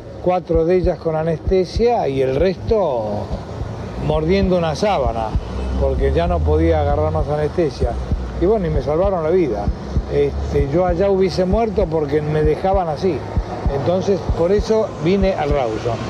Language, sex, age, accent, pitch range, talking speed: Spanish, male, 60-79, Argentinian, 110-180 Hz, 150 wpm